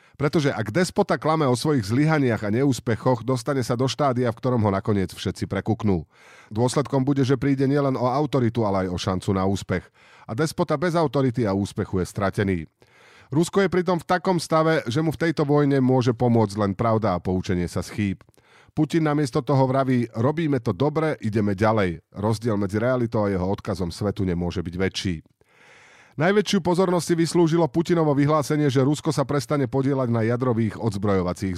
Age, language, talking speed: 40-59, Slovak, 175 wpm